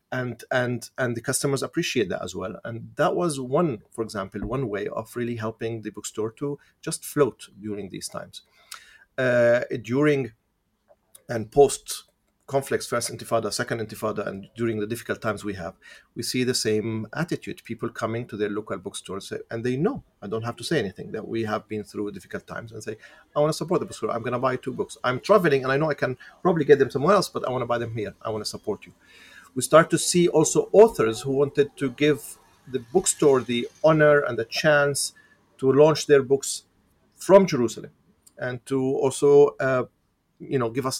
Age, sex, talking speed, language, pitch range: 40-59, male, 205 wpm, English, 110-145 Hz